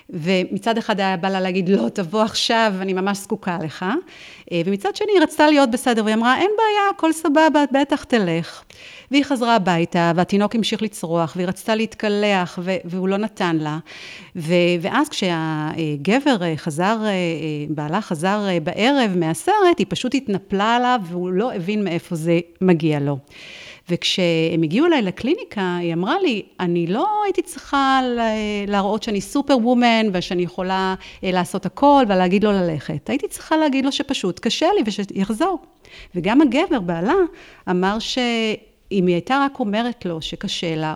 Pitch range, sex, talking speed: 180-250 Hz, female, 145 wpm